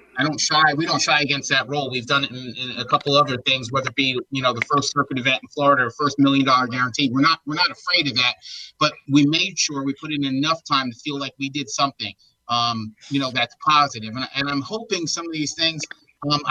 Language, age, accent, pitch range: English, 30-49, American, 135-155 Hz